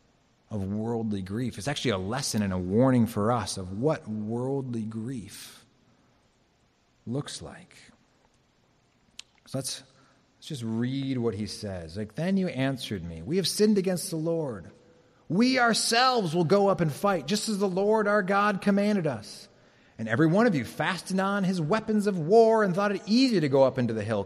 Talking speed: 180 wpm